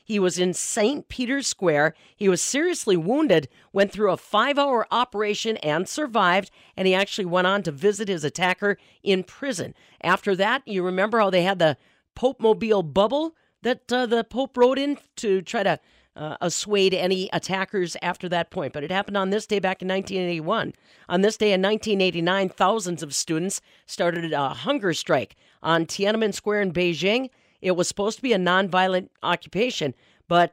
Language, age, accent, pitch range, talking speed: English, 40-59, American, 170-220 Hz, 175 wpm